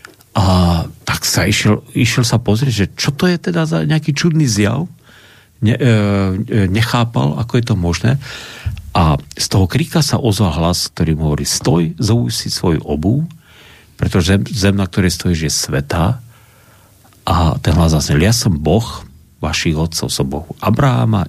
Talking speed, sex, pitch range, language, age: 165 wpm, male, 90-115 Hz, Slovak, 50-69